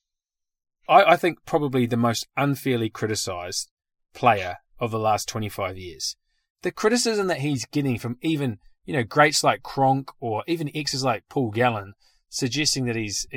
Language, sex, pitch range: English, male, 110-145 Hz